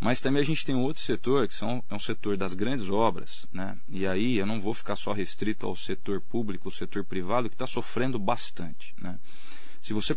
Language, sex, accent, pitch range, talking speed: Portuguese, male, Brazilian, 95-125 Hz, 225 wpm